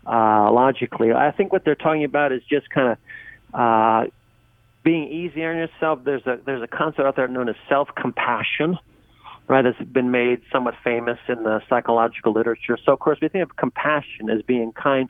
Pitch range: 115-140 Hz